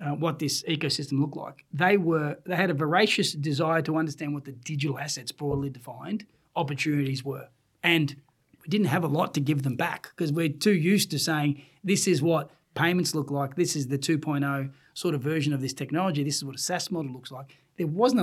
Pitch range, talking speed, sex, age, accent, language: 140-165 Hz, 210 wpm, male, 30-49, Australian, English